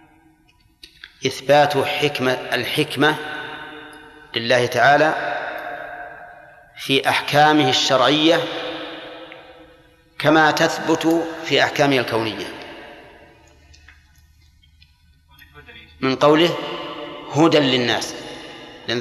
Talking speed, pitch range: 55 wpm, 130-160 Hz